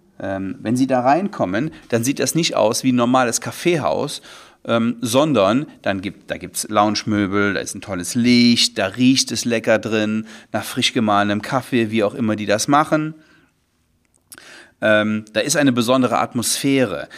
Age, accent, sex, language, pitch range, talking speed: 40-59, German, male, German, 95-130 Hz, 155 wpm